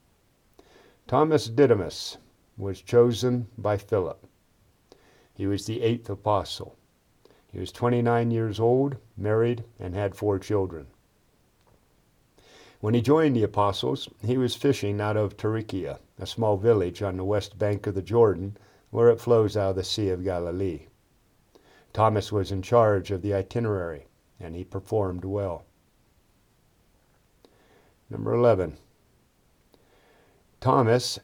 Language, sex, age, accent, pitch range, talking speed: English, male, 50-69, American, 95-115 Hz, 125 wpm